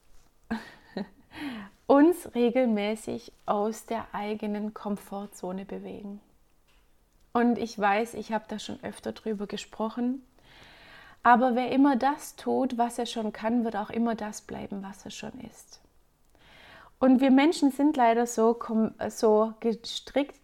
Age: 30-49